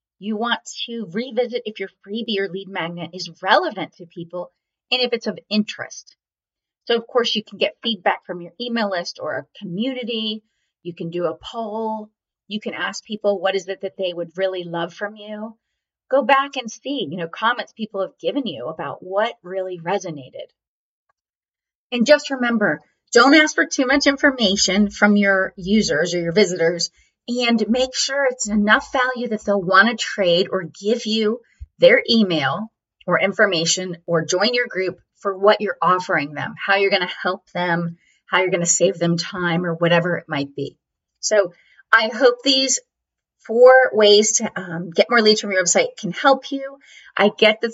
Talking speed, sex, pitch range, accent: 185 wpm, female, 180-235 Hz, American